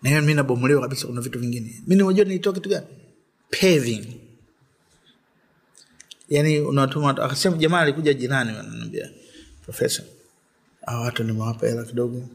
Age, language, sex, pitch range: 30-49, Swahili, male, 110-130 Hz